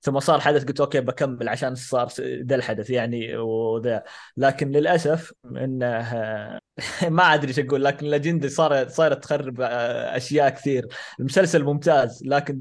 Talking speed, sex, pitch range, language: 140 wpm, male, 130-170 Hz, Arabic